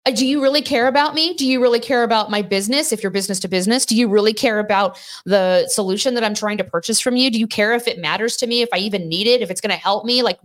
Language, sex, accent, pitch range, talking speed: English, female, American, 175-230 Hz, 300 wpm